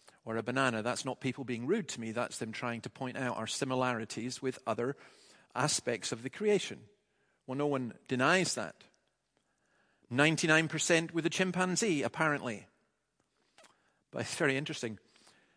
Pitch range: 120-160 Hz